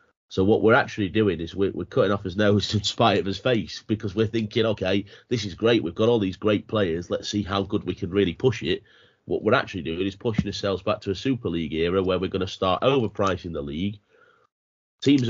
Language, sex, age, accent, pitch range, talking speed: English, male, 30-49, British, 90-110 Hz, 240 wpm